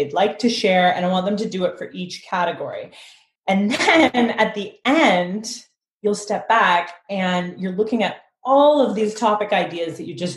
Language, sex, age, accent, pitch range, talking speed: English, female, 30-49, American, 180-215 Hz, 190 wpm